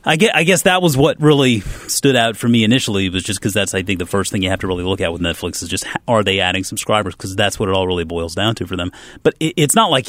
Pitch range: 95-130 Hz